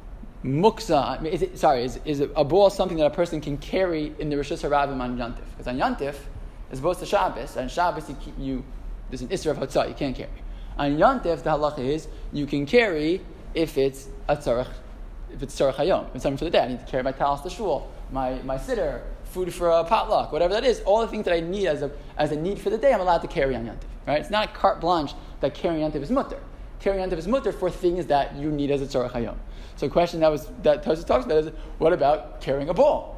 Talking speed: 250 wpm